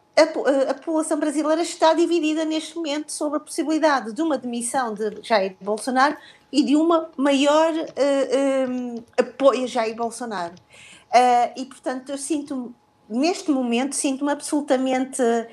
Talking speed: 130 wpm